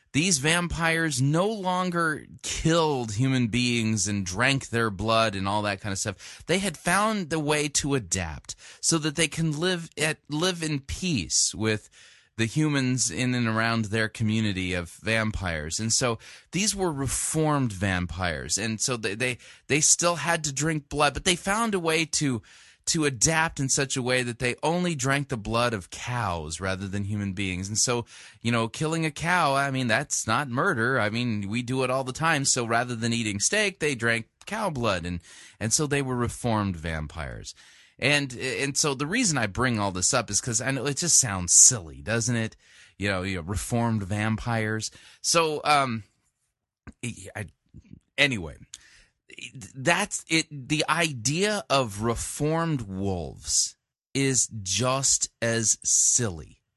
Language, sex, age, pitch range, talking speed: English, male, 20-39, 110-150 Hz, 170 wpm